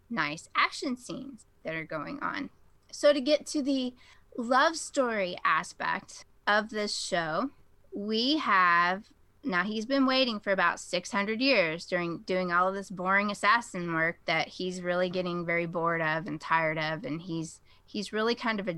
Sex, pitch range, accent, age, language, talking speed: female, 180-235 Hz, American, 20-39, English, 170 wpm